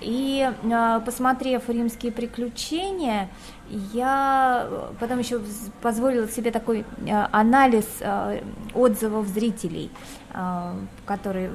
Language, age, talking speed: Russian, 20-39, 75 wpm